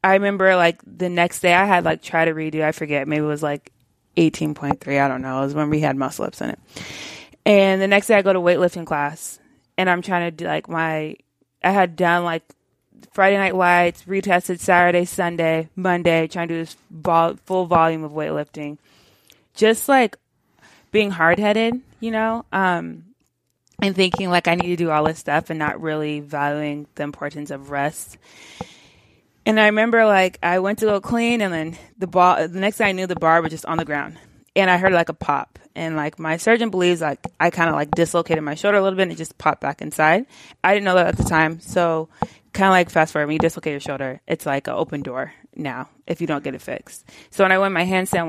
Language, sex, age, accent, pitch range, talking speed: English, female, 20-39, American, 155-190 Hz, 230 wpm